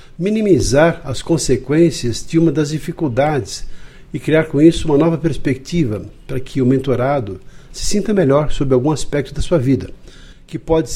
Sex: male